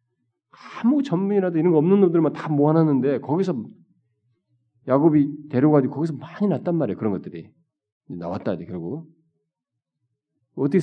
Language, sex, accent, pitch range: Korean, male, native, 105-150 Hz